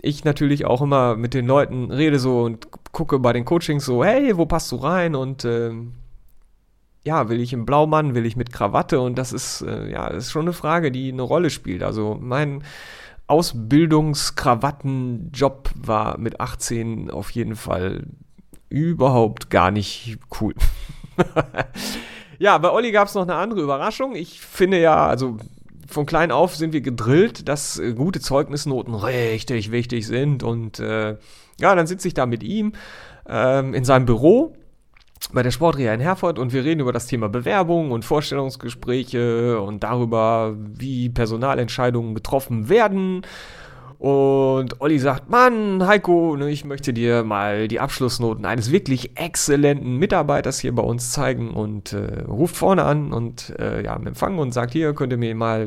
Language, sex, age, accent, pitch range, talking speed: German, male, 40-59, German, 115-155 Hz, 165 wpm